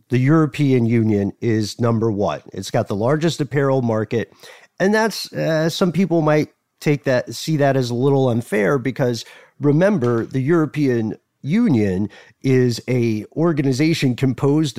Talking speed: 140 wpm